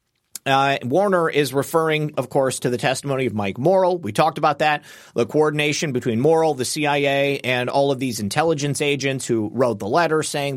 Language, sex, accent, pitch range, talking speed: English, male, American, 130-165 Hz, 185 wpm